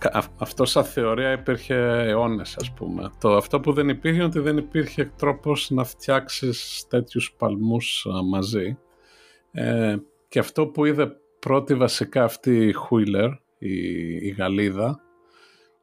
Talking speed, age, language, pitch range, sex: 135 wpm, 50-69, Greek, 100-135 Hz, male